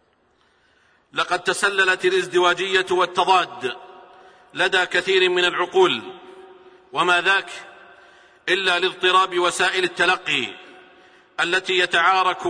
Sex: male